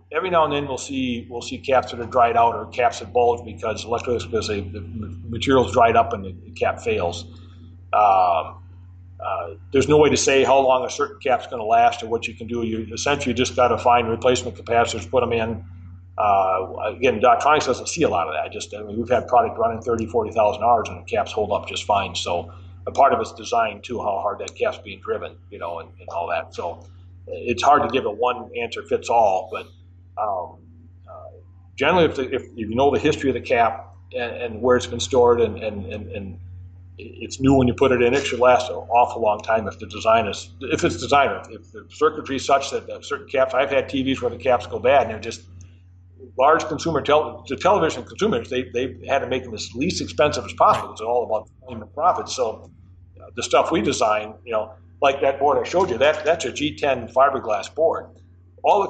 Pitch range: 90-125 Hz